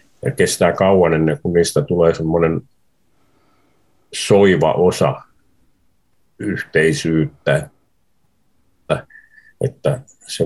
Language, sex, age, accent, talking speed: Finnish, male, 50-69, native, 70 wpm